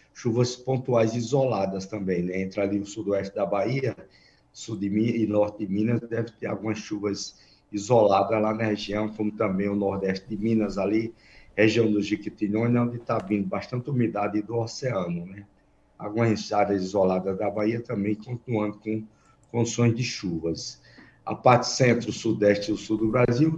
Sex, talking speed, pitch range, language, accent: male, 165 wpm, 105-120 Hz, Portuguese, Brazilian